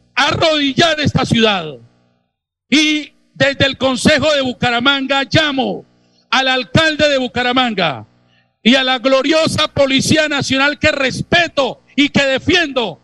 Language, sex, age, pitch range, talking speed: Spanish, male, 50-69, 225-300 Hz, 115 wpm